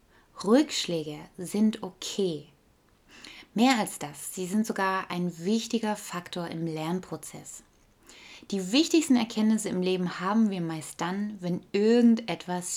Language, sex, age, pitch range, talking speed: German, female, 20-39, 175-220 Hz, 120 wpm